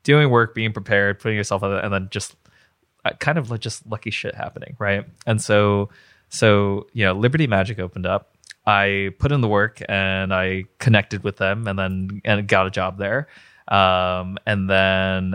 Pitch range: 95-110 Hz